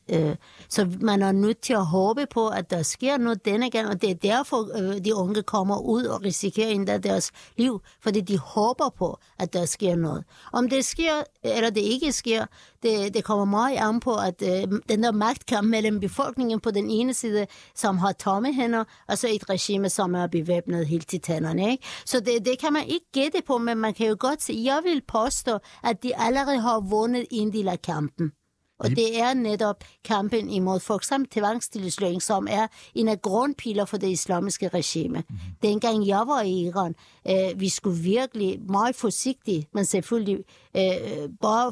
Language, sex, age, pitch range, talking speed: Danish, female, 60-79, 190-235 Hz, 185 wpm